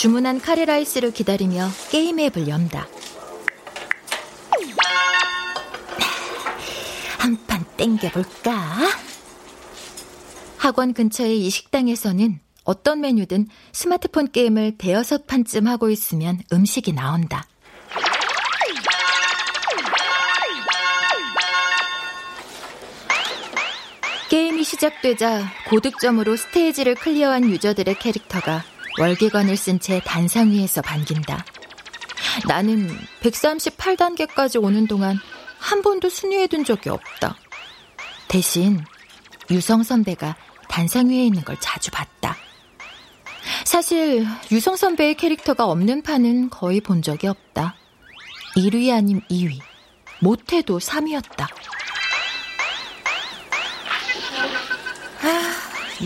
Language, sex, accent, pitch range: Korean, female, native, 180-275 Hz